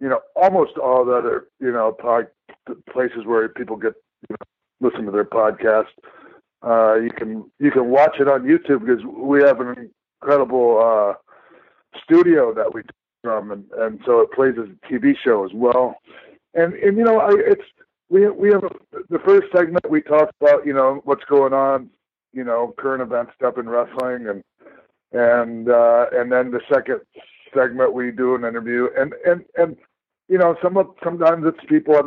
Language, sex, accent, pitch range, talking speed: English, male, American, 120-165 Hz, 185 wpm